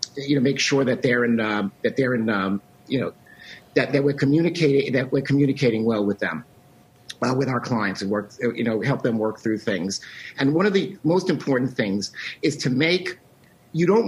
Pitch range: 120-155 Hz